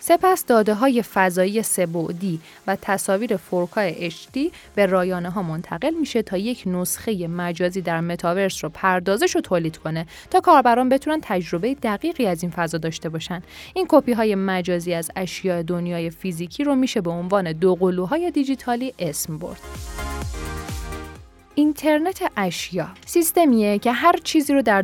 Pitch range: 175-240 Hz